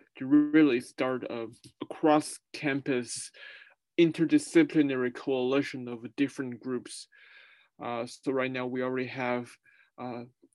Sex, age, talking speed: male, 20-39, 100 wpm